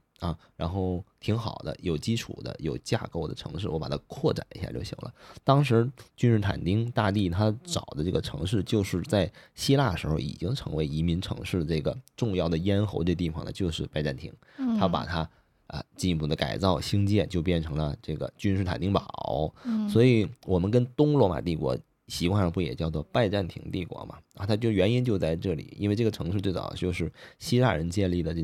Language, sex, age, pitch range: Chinese, male, 20-39, 85-105 Hz